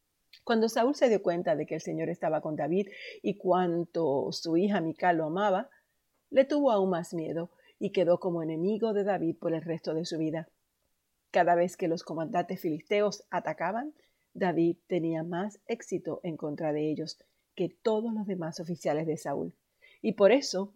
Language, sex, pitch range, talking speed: Spanish, female, 160-185 Hz, 175 wpm